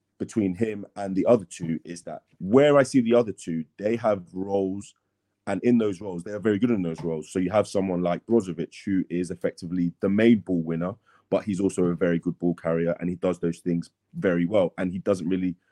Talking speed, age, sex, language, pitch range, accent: 230 wpm, 30-49, male, English, 95-125 Hz, British